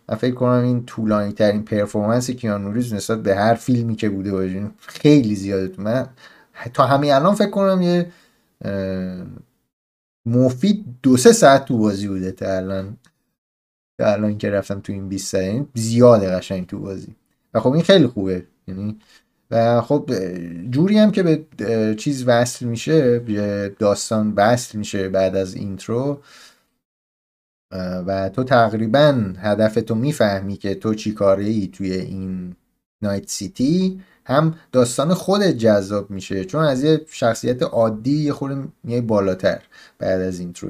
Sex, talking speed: male, 140 wpm